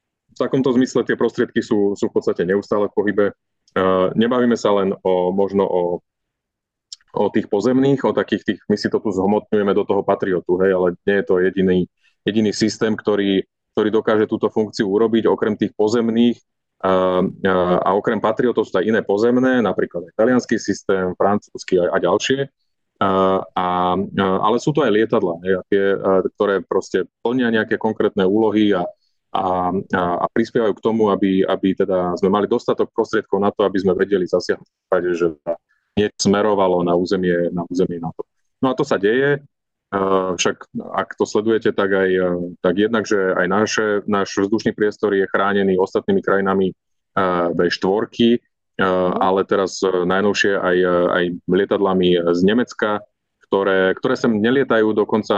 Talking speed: 160 wpm